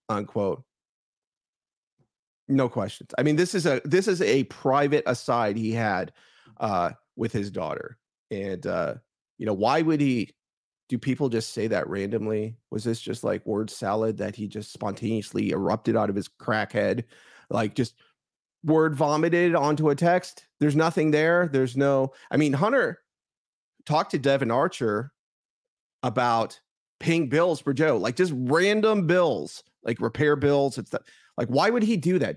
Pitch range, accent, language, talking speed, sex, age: 115-170 Hz, American, English, 160 wpm, male, 30-49